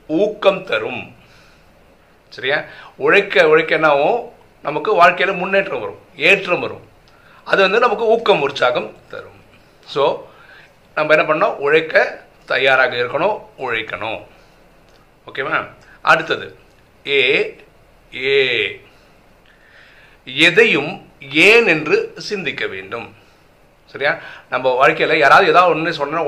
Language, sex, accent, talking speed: Tamil, male, native, 55 wpm